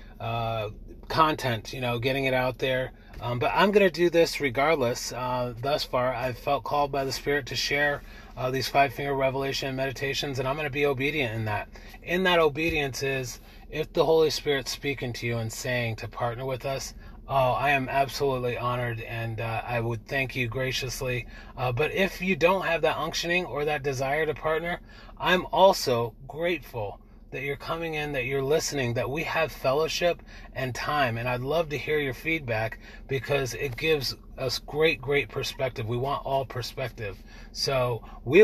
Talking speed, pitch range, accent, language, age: 185 wpm, 120-145 Hz, American, English, 30-49